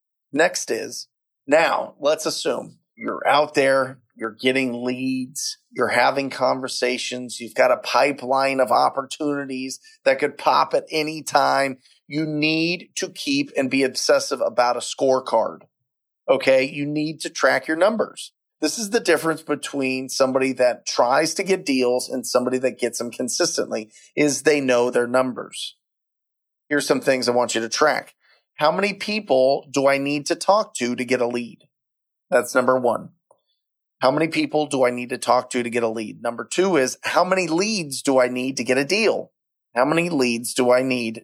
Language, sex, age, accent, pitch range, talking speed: English, male, 30-49, American, 125-170 Hz, 175 wpm